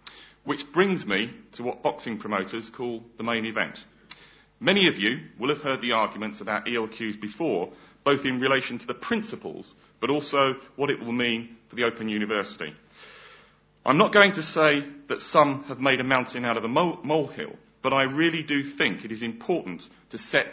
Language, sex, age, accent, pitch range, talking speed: English, male, 40-59, British, 110-145 Hz, 185 wpm